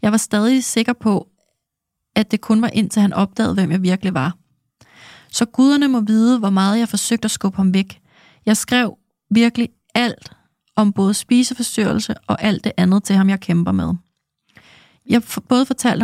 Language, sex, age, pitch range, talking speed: Danish, female, 30-49, 195-235 Hz, 180 wpm